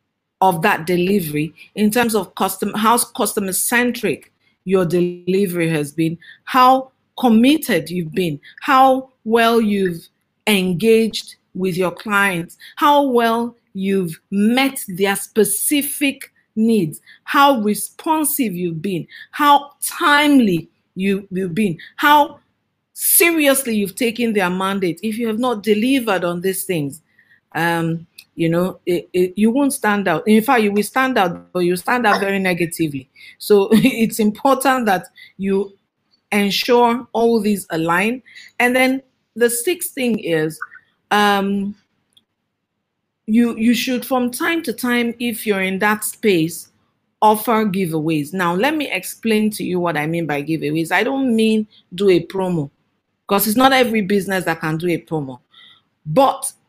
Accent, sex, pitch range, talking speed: Nigerian, female, 180-240 Hz, 140 wpm